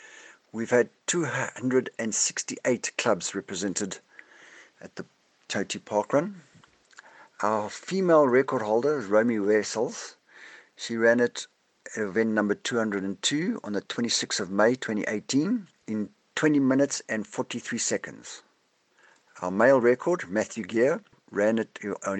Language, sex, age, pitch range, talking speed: English, male, 60-79, 105-140 Hz, 120 wpm